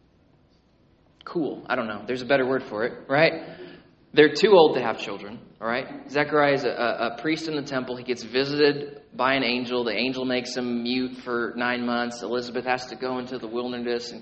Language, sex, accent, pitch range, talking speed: English, male, American, 125-150 Hz, 205 wpm